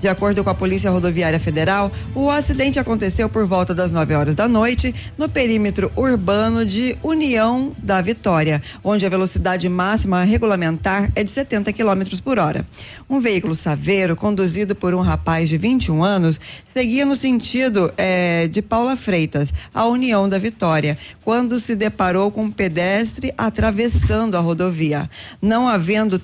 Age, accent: 20-39, Brazilian